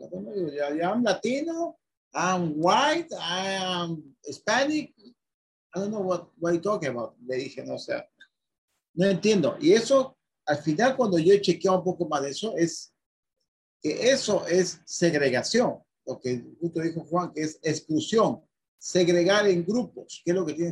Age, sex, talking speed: 50-69, male, 165 wpm